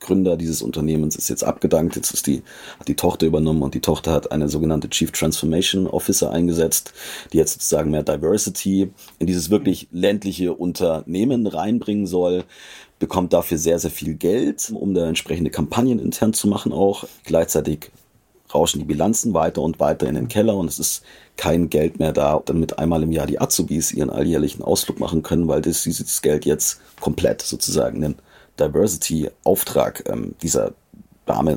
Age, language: 40-59, German